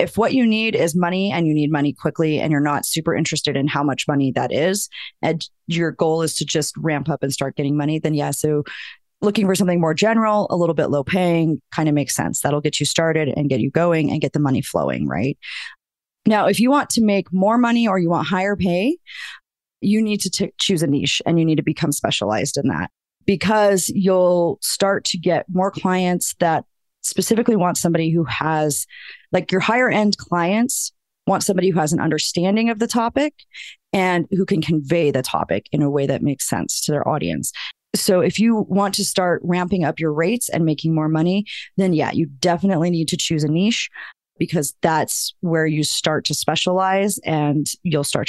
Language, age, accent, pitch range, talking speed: English, 30-49, American, 155-195 Hz, 205 wpm